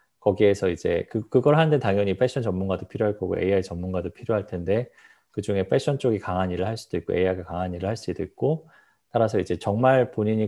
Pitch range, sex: 95-130 Hz, male